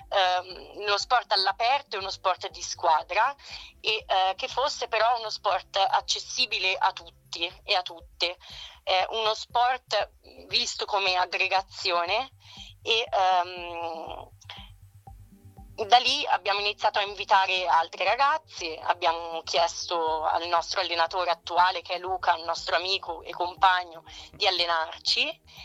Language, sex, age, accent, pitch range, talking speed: Italian, female, 30-49, native, 170-200 Hz, 125 wpm